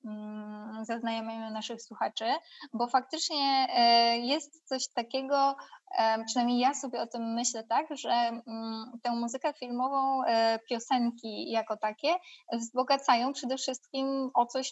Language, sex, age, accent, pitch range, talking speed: Polish, female, 20-39, native, 220-245 Hz, 110 wpm